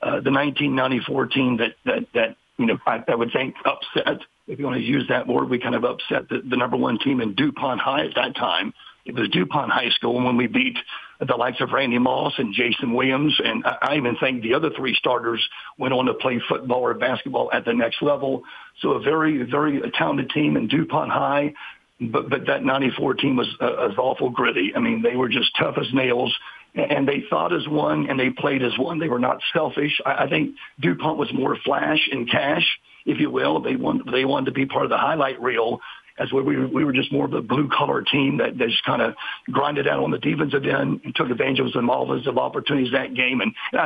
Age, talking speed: 50-69, 230 wpm